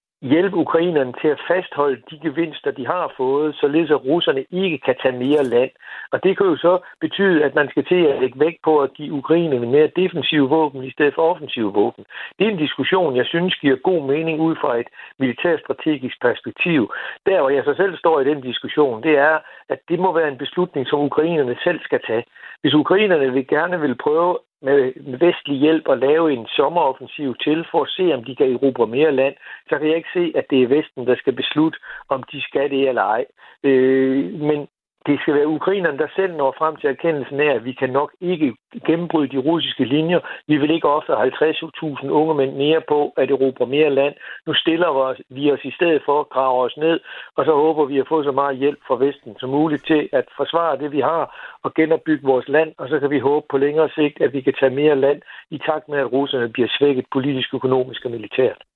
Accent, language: native, Danish